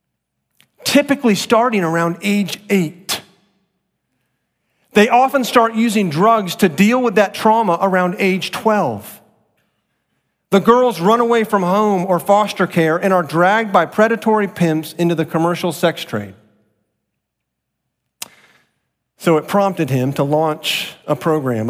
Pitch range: 150-205 Hz